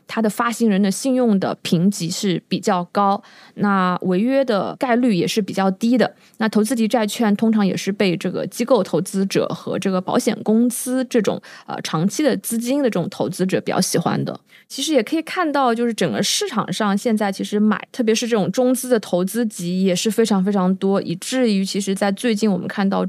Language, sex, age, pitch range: Chinese, female, 20-39, 190-230 Hz